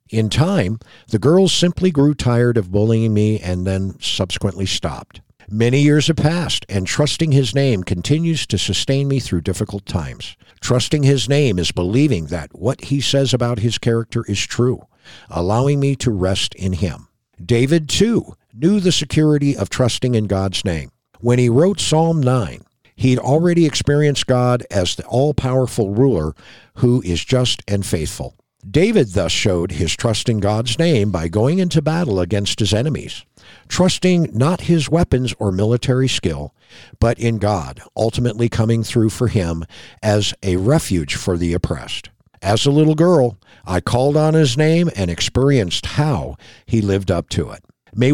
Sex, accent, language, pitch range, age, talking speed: male, American, English, 100-140 Hz, 50-69, 165 wpm